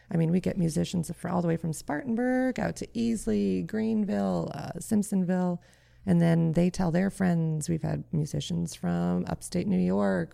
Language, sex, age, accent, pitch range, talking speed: English, female, 30-49, American, 160-185 Hz, 170 wpm